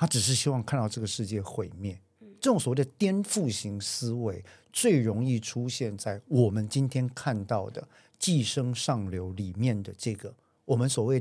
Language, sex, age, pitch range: Chinese, male, 50-69, 105-145 Hz